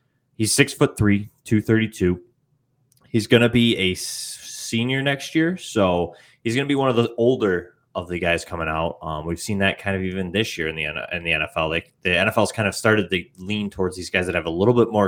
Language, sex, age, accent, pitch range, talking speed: English, male, 20-39, American, 90-115 Hz, 235 wpm